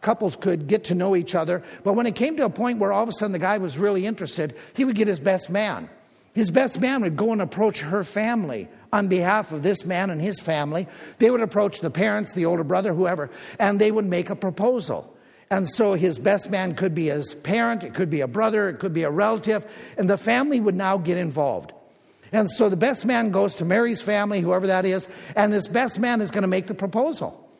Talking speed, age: 240 wpm, 50-69